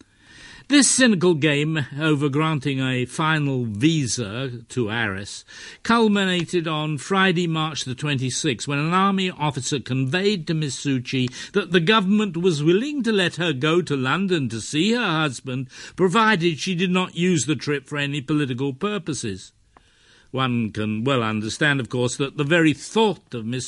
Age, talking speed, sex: 60-79, 155 wpm, male